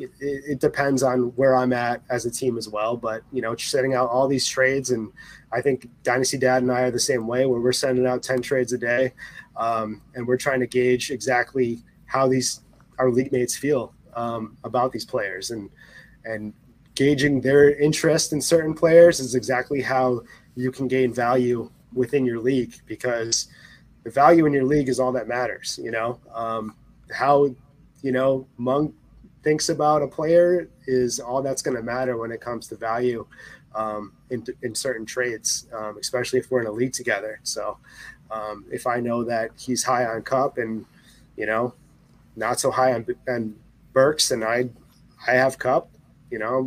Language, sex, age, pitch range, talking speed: English, male, 20-39, 120-140 Hz, 185 wpm